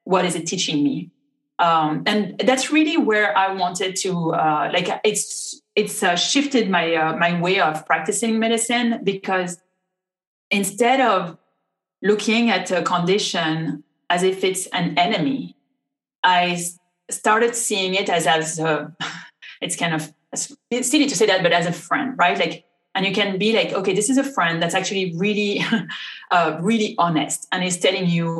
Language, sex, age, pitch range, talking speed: English, female, 30-49, 165-210 Hz, 165 wpm